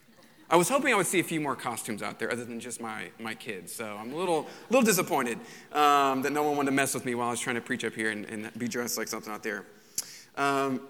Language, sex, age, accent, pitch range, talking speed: English, male, 30-49, American, 120-155 Hz, 280 wpm